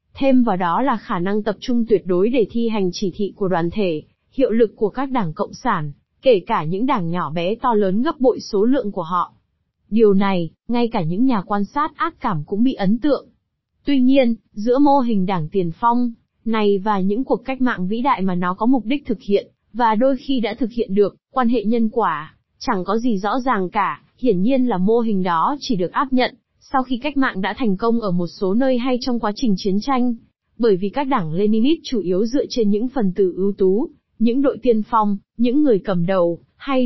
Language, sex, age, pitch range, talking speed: Vietnamese, female, 20-39, 195-255 Hz, 235 wpm